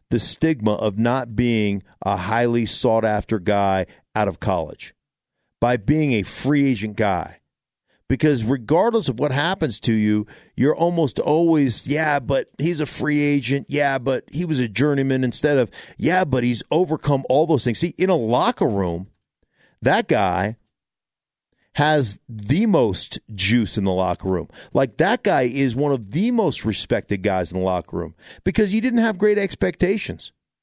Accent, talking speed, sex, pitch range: American, 165 wpm, male, 115-175 Hz